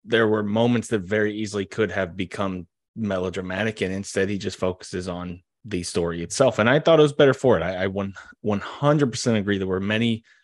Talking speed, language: 195 wpm, English